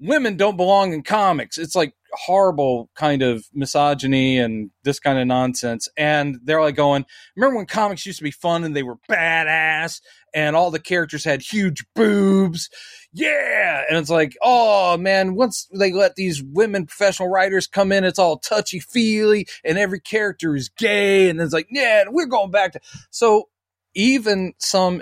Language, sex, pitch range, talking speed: English, male, 140-195 Hz, 175 wpm